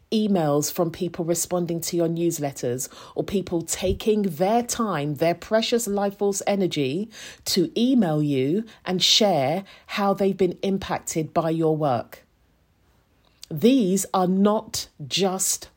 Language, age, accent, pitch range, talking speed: English, 40-59, British, 155-205 Hz, 125 wpm